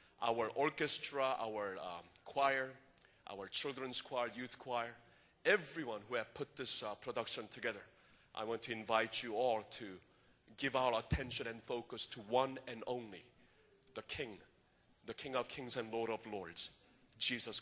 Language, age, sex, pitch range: Korean, 40-59, male, 120-150 Hz